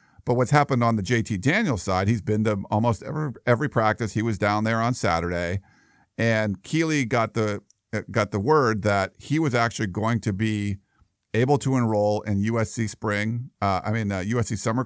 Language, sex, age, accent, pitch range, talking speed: English, male, 50-69, American, 100-125 Hz, 190 wpm